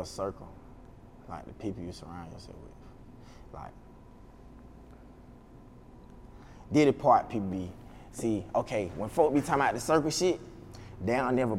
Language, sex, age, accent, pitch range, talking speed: English, male, 20-39, American, 95-130 Hz, 150 wpm